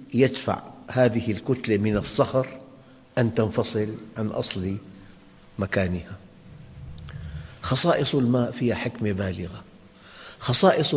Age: 50-69